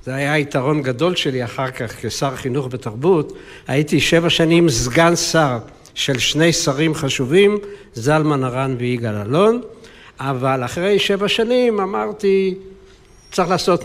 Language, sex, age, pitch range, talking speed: Hebrew, male, 60-79, 125-175 Hz, 130 wpm